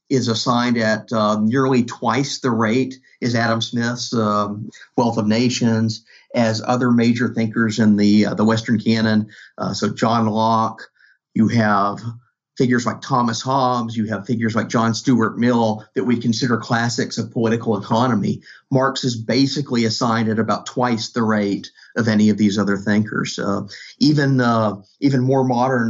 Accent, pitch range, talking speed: American, 110-125 Hz, 160 wpm